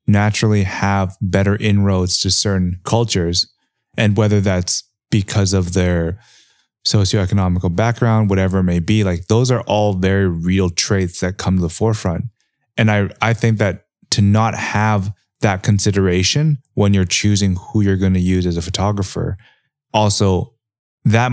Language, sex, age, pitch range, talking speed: English, male, 20-39, 95-110 Hz, 150 wpm